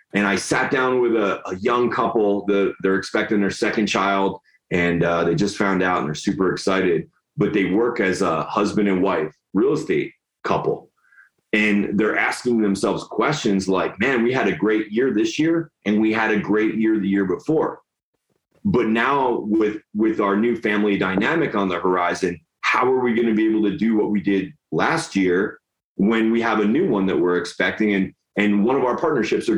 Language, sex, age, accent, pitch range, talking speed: English, male, 30-49, American, 100-130 Hz, 205 wpm